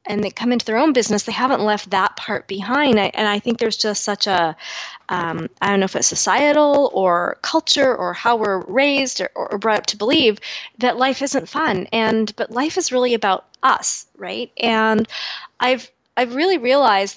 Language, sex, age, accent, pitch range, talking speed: English, female, 20-39, American, 200-250 Hz, 190 wpm